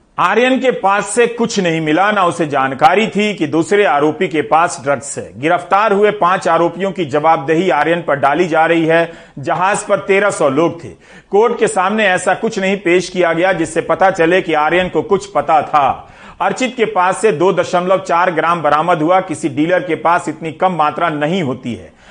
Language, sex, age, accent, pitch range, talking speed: Hindi, male, 40-59, native, 155-195 Hz, 200 wpm